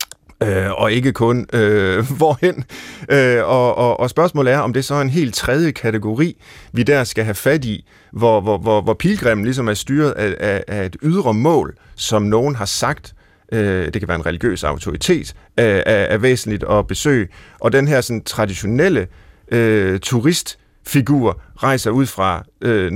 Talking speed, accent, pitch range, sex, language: 160 wpm, native, 100-135 Hz, male, Danish